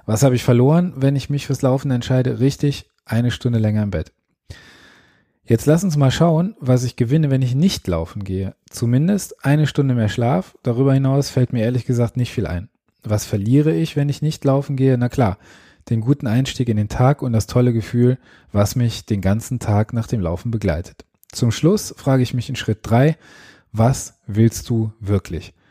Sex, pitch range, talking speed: male, 110-135 Hz, 195 wpm